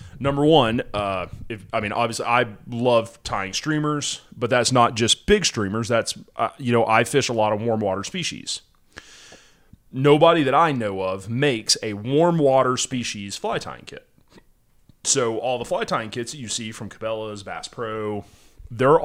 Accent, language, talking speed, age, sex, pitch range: American, English, 175 wpm, 30-49, male, 110-145 Hz